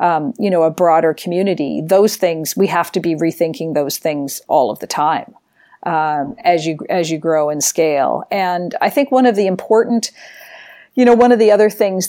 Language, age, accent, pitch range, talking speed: English, 40-59, American, 165-195 Hz, 205 wpm